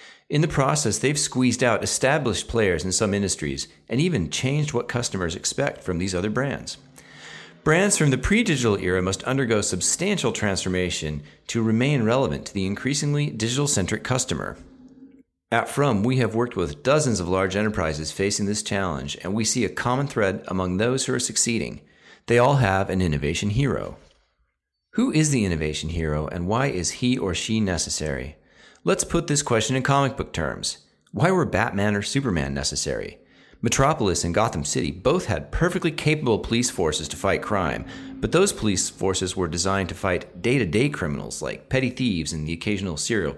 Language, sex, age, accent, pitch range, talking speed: English, male, 40-59, American, 90-130 Hz, 170 wpm